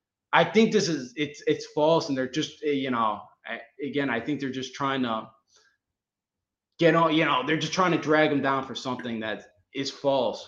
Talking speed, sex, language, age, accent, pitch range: 205 wpm, male, English, 20-39, American, 120-160 Hz